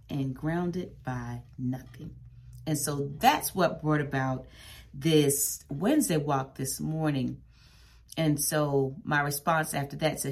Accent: American